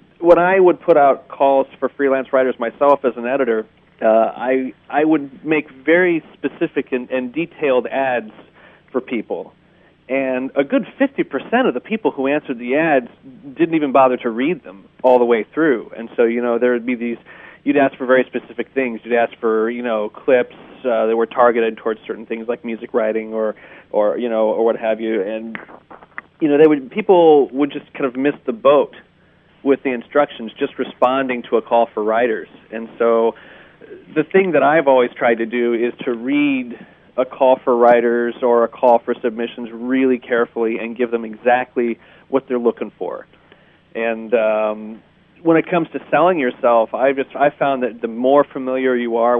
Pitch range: 115-140 Hz